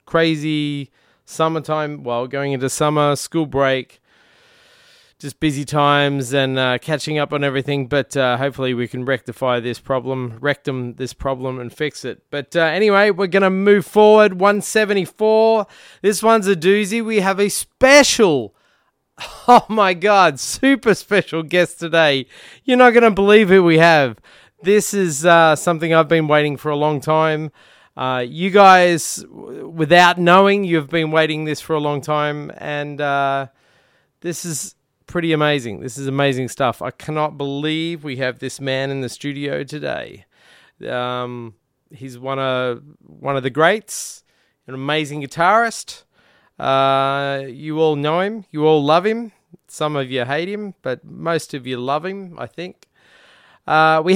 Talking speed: 155 wpm